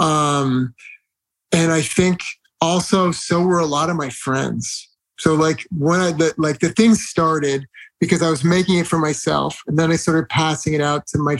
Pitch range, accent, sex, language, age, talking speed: 155-185 Hz, American, male, English, 30-49, 190 wpm